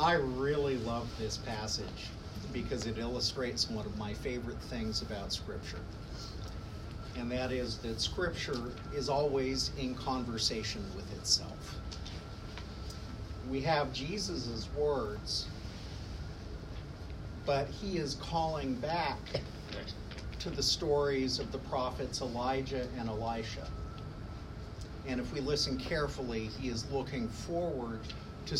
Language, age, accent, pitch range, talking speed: English, 50-69, American, 105-135 Hz, 115 wpm